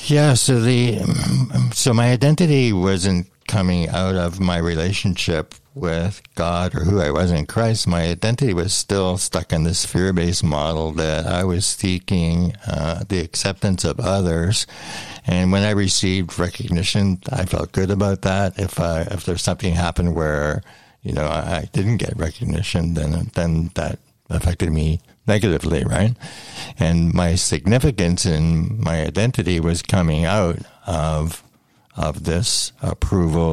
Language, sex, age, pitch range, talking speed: English, male, 60-79, 85-100 Hz, 145 wpm